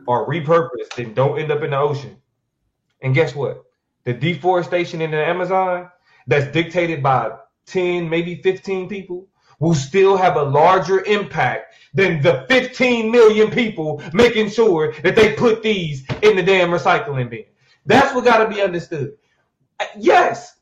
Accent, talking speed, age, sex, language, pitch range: American, 155 wpm, 30-49, male, English, 155-235 Hz